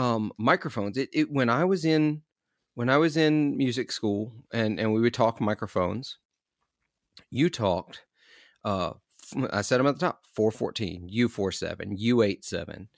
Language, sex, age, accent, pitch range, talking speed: English, male, 40-59, American, 105-145 Hz, 145 wpm